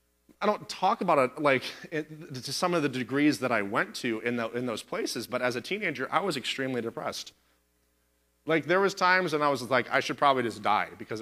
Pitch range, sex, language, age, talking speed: 105-145 Hz, male, English, 30-49, 230 wpm